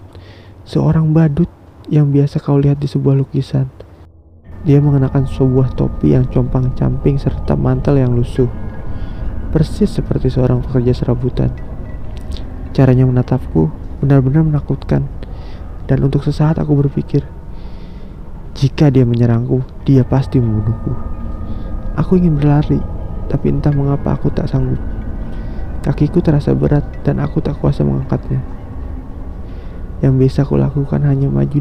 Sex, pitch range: male, 95-140 Hz